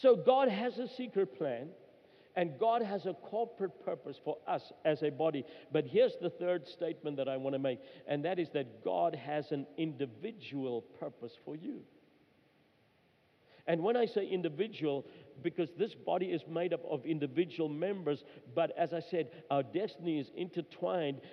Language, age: English, 50-69